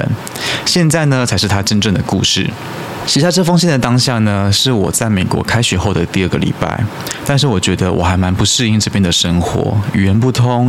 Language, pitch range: Chinese, 95-115 Hz